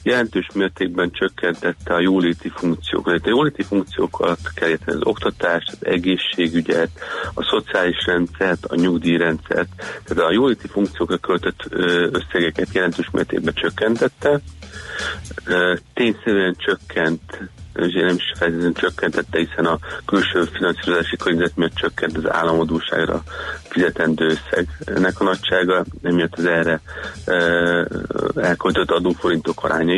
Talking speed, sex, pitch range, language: 110 wpm, male, 85-95 Hz, Hungarian